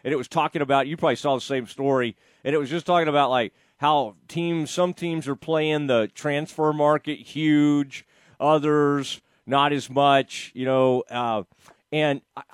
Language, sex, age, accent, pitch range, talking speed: English, male, 40-59, American, 135-195 Hz, 175 wpm